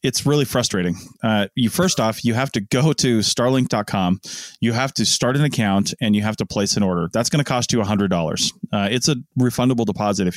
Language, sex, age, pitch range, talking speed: English, male, 30-49, 100-120 Hz, 220 wpm